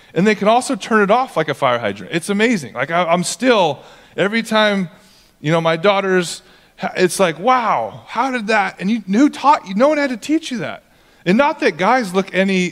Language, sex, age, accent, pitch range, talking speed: English, male, 30-49, American, 155-210 Hz, 215 wpm